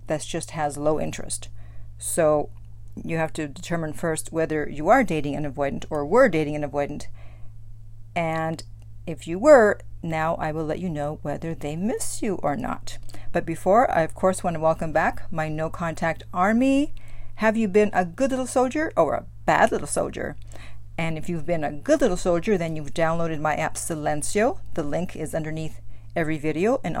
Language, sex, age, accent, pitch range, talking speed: English, female, 50-69, American, 140-185 Hz, 185 wpm